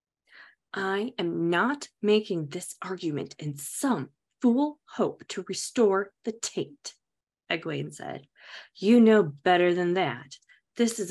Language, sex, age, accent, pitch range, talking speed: English, female, 20-39, American, 185-270 Hz, 125 wpm